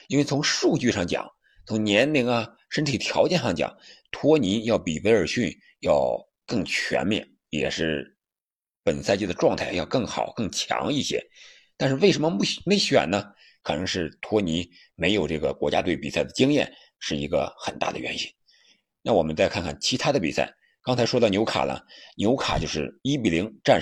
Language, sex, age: Chinese, male, 50-69